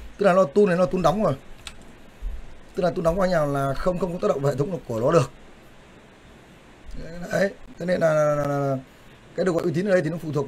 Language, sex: Vietnamese, male